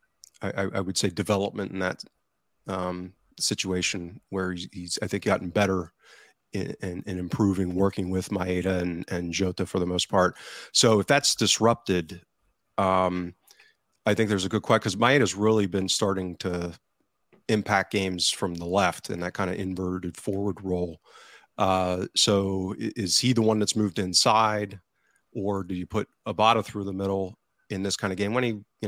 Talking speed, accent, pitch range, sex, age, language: 175 wpm, American, 95-110 Hz, male, 30-49, English